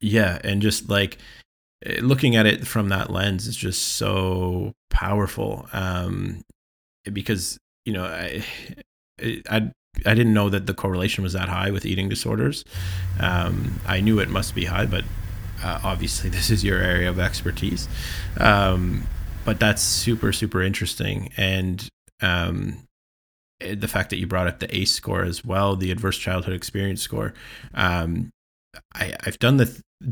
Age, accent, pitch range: 30-49, American, 90-110 Hz